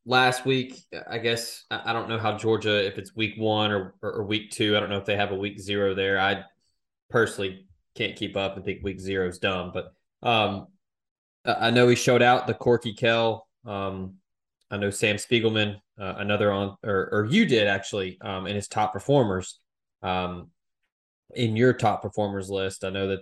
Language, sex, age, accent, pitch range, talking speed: English, male, 20-39, American, 100-115 Hz, 195 wpm